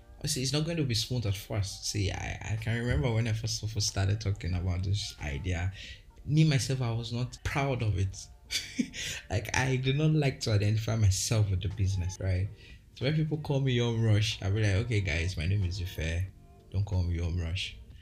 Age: 20-39